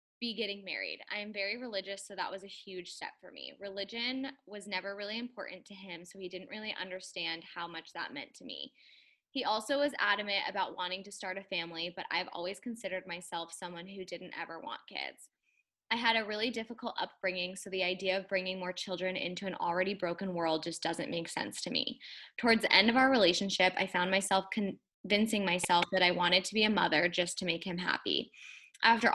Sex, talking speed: female, 210 wpm